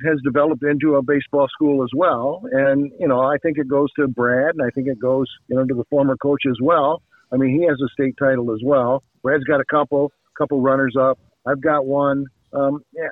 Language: English